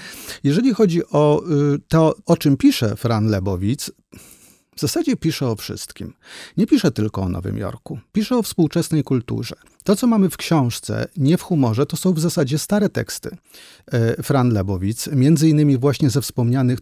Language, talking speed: Polish, 155 wpm